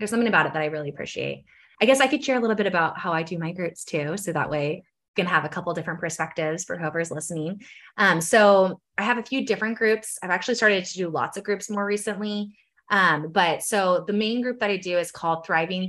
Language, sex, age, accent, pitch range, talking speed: English, female, 20-39, American, 160-215 Hz, 250 wpm